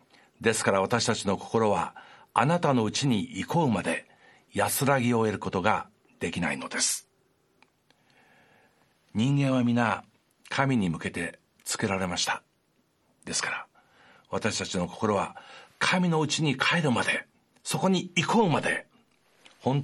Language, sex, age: Japanese, male, 60-79